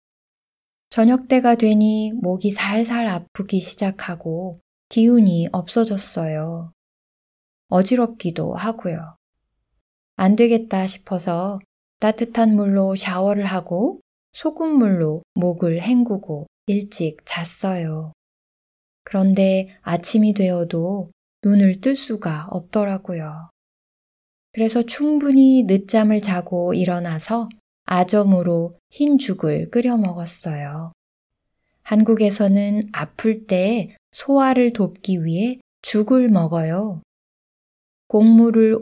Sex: female